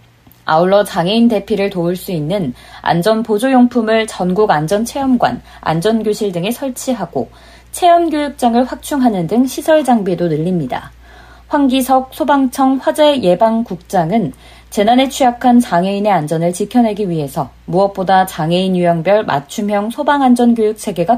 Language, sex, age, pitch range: Korean, female, 20-39, 180-255 Hz